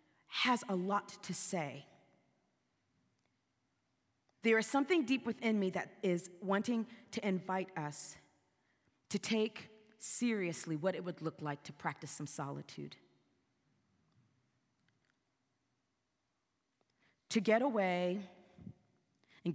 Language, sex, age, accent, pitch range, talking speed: English, female, 30-49, American, 170-230 Hz, 100 wpm